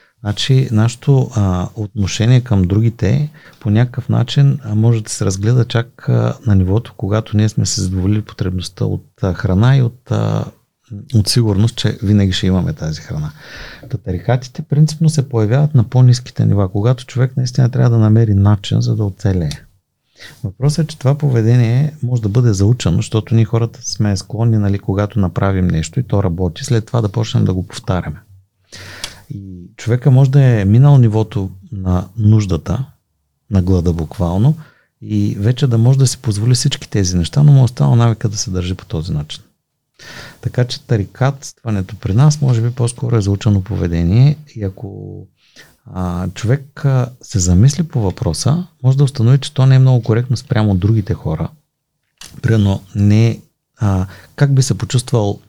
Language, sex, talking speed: Bulgarian, male, 165 wpm